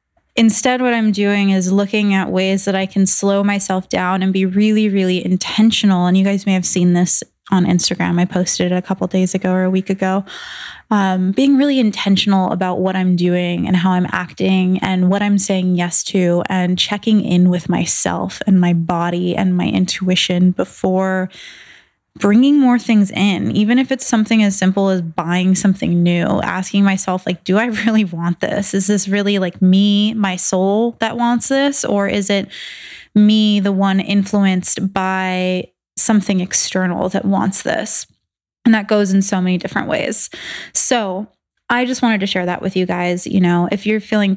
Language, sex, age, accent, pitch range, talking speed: English, female, 20-39, American, 185-205 Hz, 185 wpm